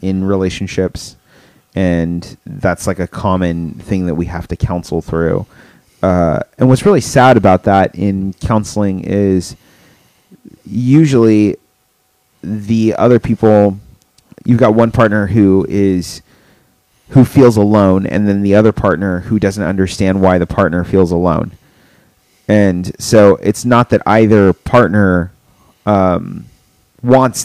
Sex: male